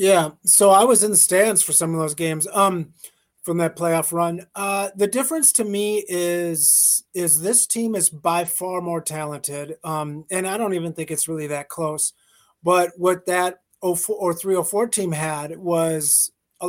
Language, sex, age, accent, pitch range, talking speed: English, male, 30-49, American, 160-190 Hz, 190 wpm